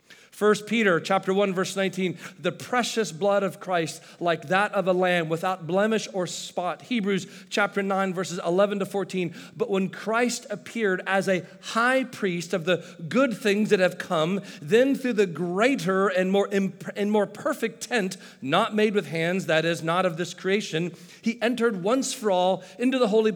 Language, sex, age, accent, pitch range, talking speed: English, male, 40-59, American, 180-220 Hz, 180 wpm